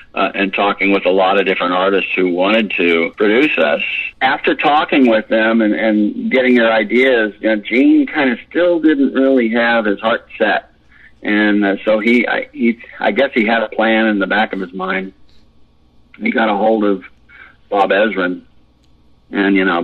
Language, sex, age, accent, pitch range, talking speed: English, male, 50-69, American, 95-110 Hz, 180 wpm